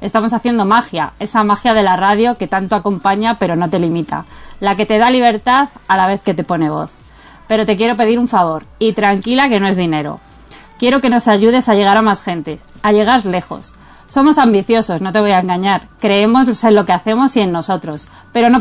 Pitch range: 190-235 Hz